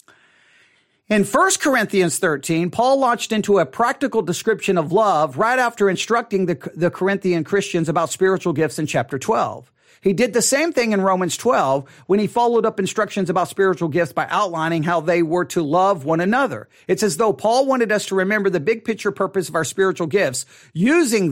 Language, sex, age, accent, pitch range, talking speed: English, male, 40-59, American, 155-210 Hz, 190 wpm